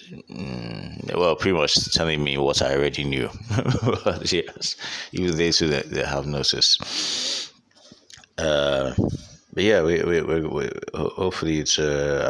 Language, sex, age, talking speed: English, male, 30-49, 125 wpm